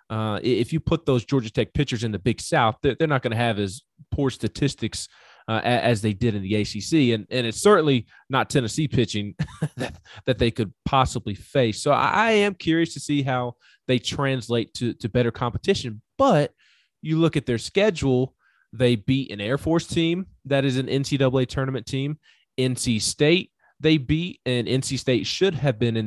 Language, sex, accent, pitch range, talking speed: English, male, American, 115-145 Hz, 195 wpm